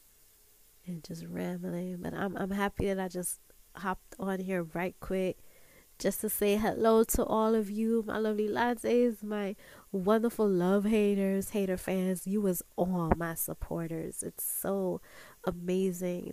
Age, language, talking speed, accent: 20-39, English, 145 wpm, American